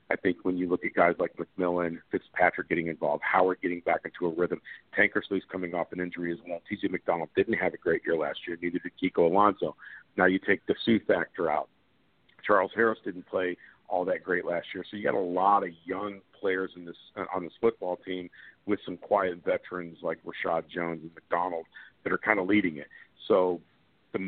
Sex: male